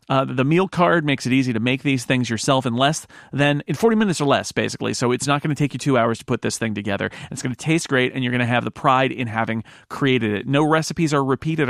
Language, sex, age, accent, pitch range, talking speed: English, male, 40-59, American, 125-160 Hz, 280 wpm